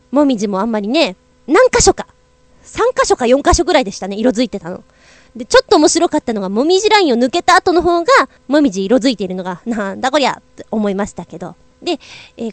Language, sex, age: Japanese, female, 20-39